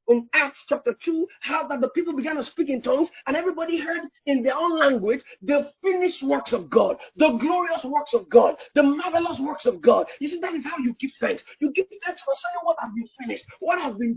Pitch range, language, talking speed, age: 270-365 Hz, English, 235 wpm, 40-59